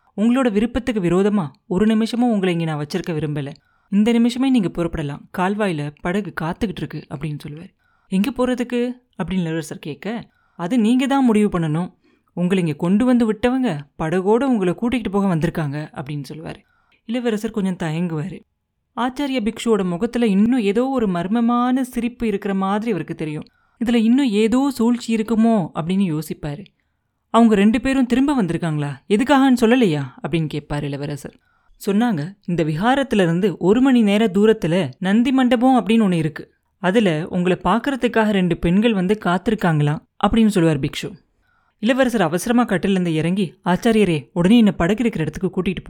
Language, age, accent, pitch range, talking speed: Tamil, 30-49, native, 170-235 Hz, 140 wpm